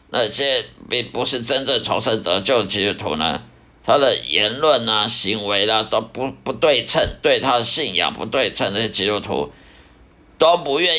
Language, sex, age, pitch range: Chinese, male, 50-69, 115-155 Hz